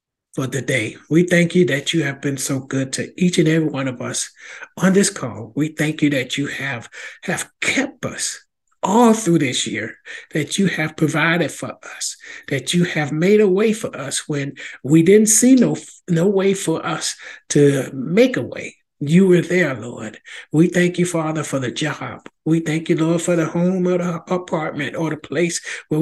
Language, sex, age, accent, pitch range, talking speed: English, male, 60-79, American, 145-180 Hz, 200 wpm